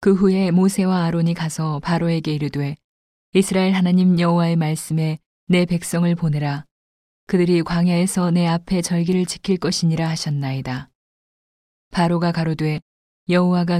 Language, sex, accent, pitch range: Korean, female, native, 155-175 Hz